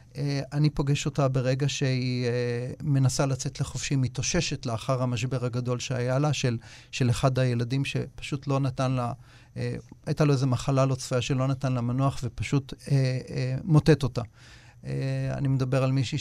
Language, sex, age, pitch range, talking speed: Hebrew, male, 40-59, 120-145 Hz, 170 wpm